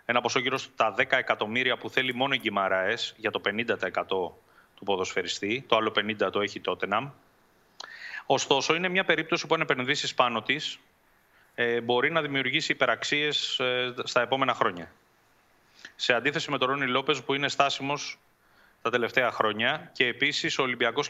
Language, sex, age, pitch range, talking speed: Greek, male, 30-49, 105-145 Hz, 155 wpm